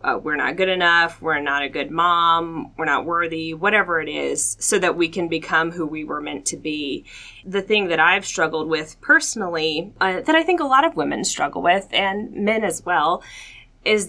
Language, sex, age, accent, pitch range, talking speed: English, female, 20-39, American, 160-200 Hz, 210 wpm